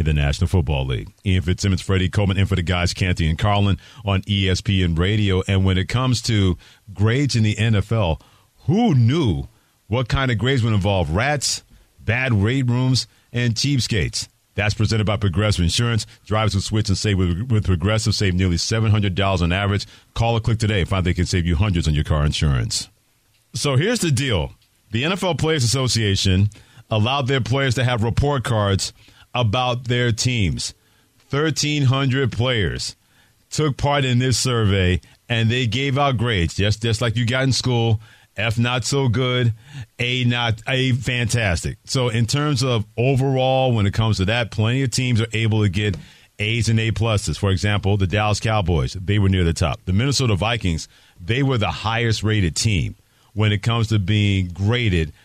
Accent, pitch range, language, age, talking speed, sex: American, 100-120 Hz, English, 40-59, 180 wpm, male